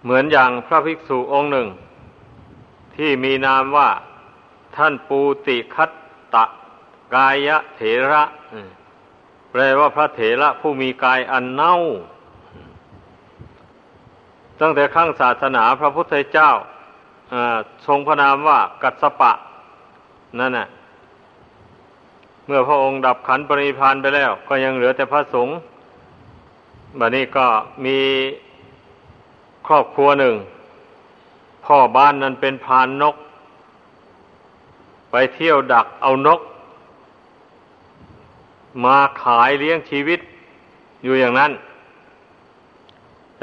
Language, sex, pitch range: Thai, male, 130-150 Hz